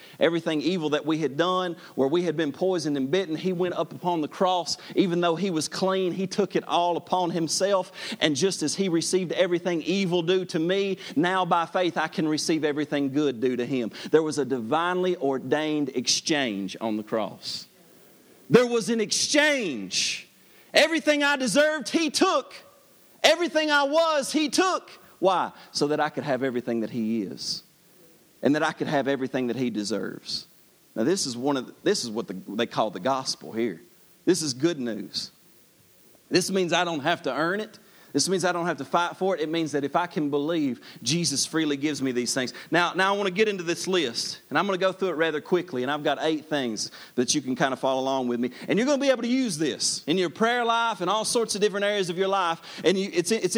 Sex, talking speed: male, 225 wpm